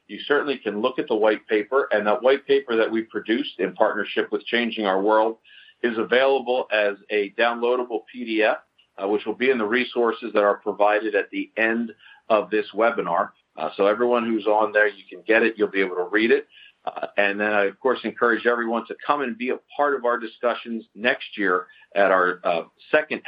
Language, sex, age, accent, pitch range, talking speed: English, male, 50-69, American, 105-125 Hz, 210 wpm